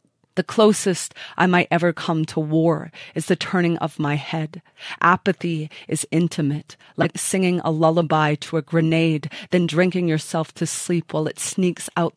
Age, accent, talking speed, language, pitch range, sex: 30-49, American, 165 wpm, English, 155-175 Hz, female